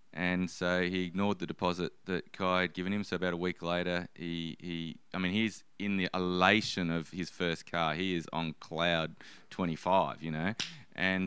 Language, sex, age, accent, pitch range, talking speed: English, male, 20-39, Australian, 80-95 Hz, 190 wpm